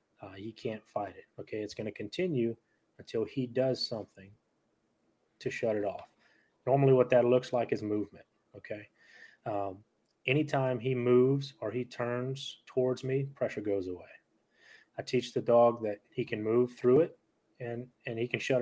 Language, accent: English, American